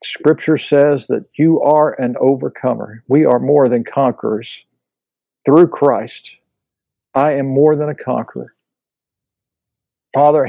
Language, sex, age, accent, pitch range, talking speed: English, male, 60-79, American, 115-135 Hz, 120 wpm